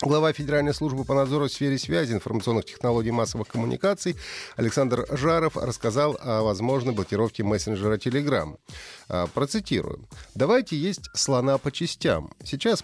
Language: Russian